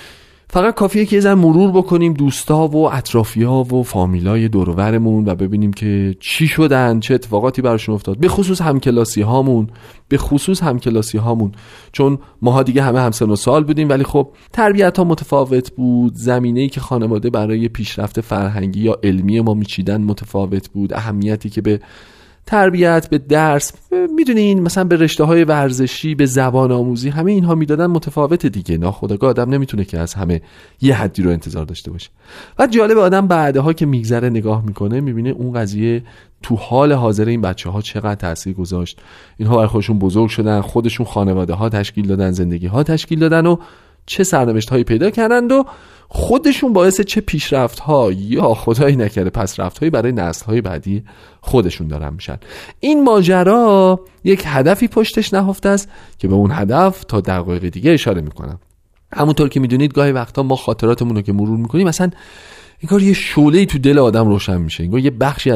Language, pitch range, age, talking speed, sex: Persian, 105-155 Hz, 30-49, 165 wpm, male